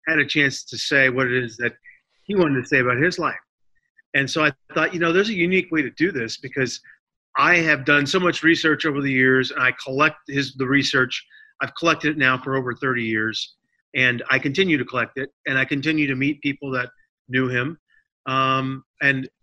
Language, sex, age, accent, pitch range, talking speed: English, male, 40-59, American, 125-155 Hz, 215 wpm